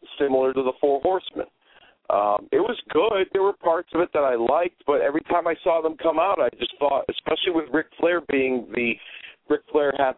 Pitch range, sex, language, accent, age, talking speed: 125-165 Hz, male, English, American, 40-59, 220 wpm